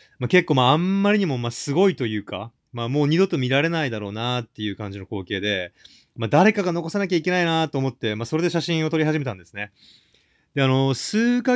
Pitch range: 110-165 Hz